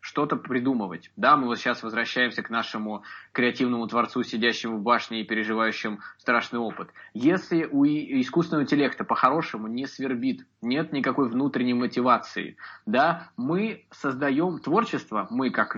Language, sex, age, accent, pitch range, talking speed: Russian, male, 20-39, native, 115-150 Hz, 135 wpm